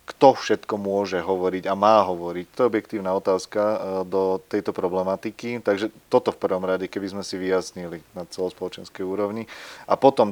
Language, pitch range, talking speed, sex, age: Slovak, 100-115 Hz, 165 wpm, male, 30-49